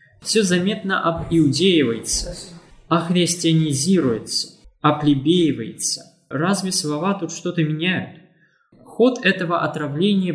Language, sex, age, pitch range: Russian, male, 20-39, 145-190 Hz